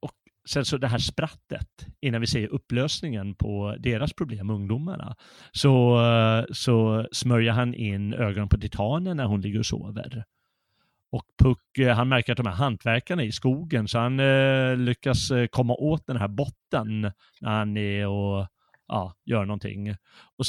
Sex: male